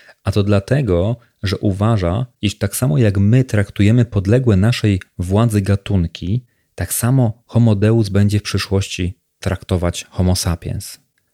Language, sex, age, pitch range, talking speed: Polish, male, 30-49, 95-115 Hz, 130 wpm